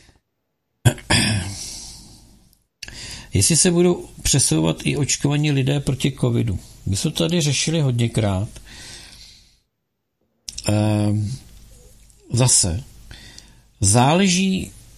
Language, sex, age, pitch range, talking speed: Czech, male, 50-69, 105-135 Hz, 65 wpm